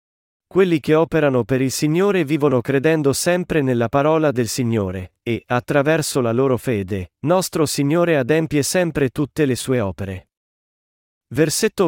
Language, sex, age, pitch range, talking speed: Italian, male, 40-59, 125-155 Hz, 135 wpm